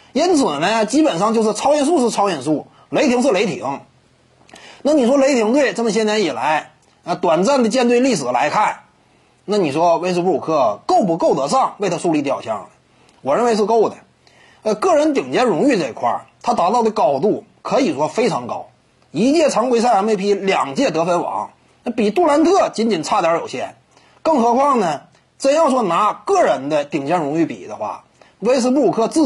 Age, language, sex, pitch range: 30-49, Chinese, male, 210-290 Hz